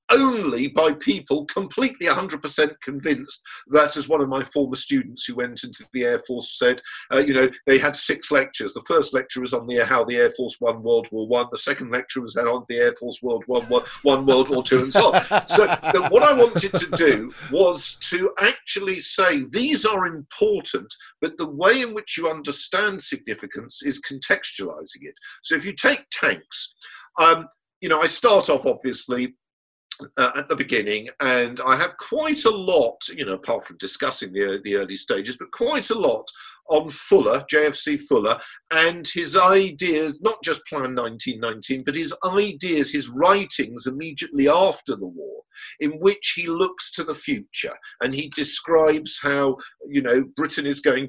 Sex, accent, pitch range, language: male, British, 125-180 Hz, English